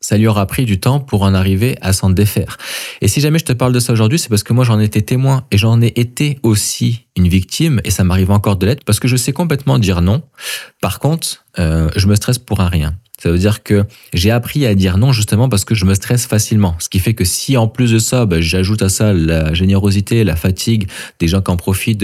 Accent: French